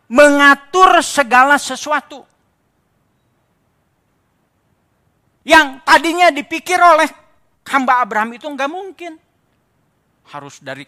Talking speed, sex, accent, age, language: 75 wpm, male, native, 50-69, Indonesian